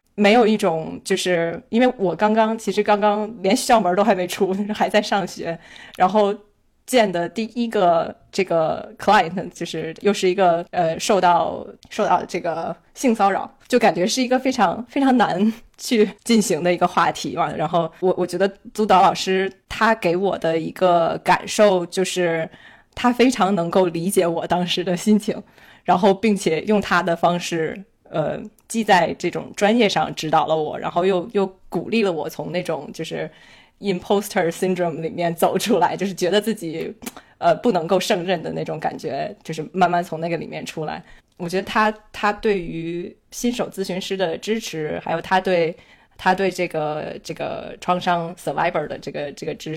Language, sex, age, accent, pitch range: Chinese, female, 20-39, native, 170-210 Hz